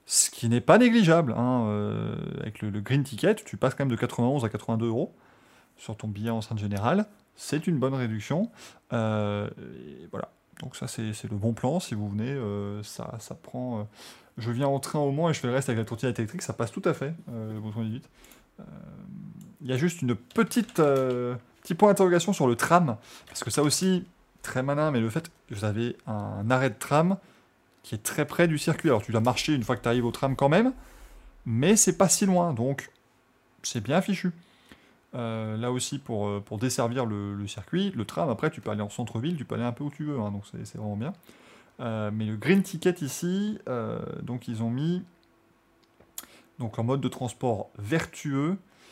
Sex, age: male, 20-39